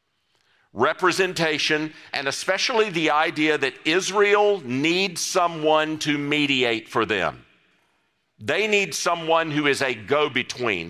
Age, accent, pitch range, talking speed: 50-69, American, 130-170 Hz, 110 wpm